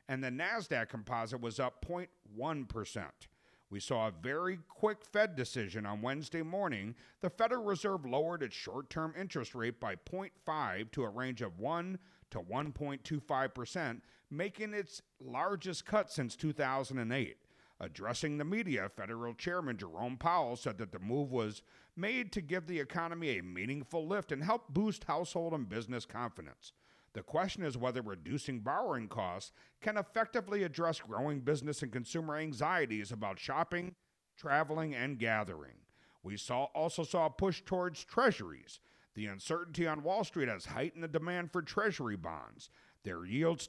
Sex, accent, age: male, American, 50-69